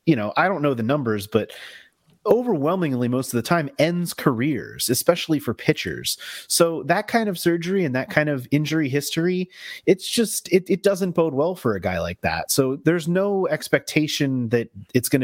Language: English